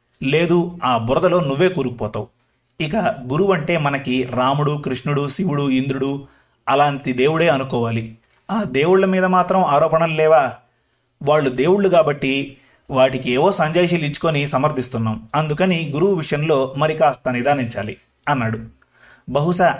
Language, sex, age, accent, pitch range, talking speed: Telugu, male, 30-49, native, 125-160 Hz, 115 wpm